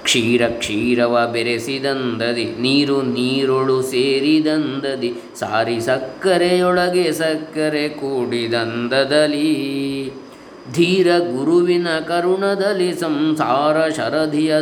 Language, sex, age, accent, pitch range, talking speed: English, male, 20-39, Indian, 130-160 Hz, 80 wpm